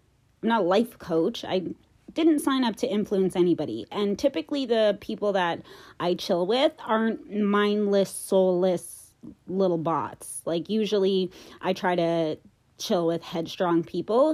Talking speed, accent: 140 wpm, American